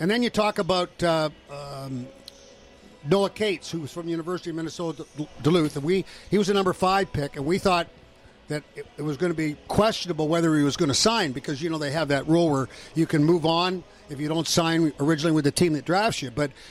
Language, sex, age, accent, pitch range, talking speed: English, male, 60-79, American, 155-190 Hz, 245 wpm